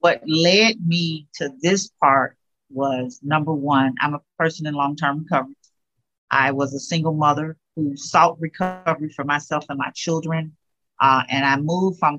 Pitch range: 145-170 Hz